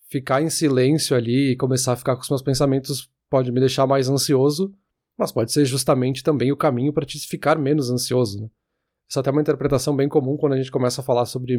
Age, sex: 20-39, male